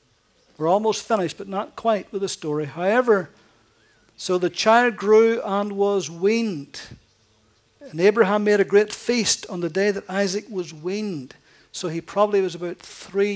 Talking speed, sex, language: 160 wpm, male, English